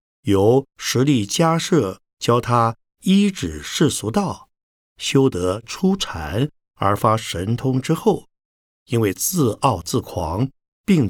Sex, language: male, Chinese